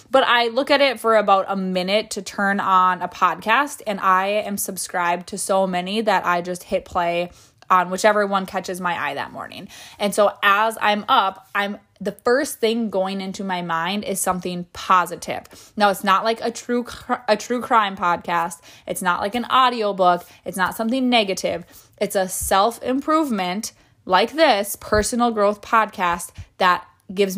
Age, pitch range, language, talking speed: 20-39, 180-220 Hz, English, 175 wpm